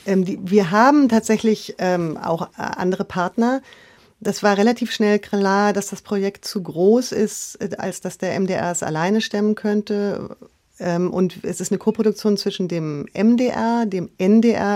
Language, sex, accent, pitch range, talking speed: German, female, German, 175-210 Hz, 140 wpm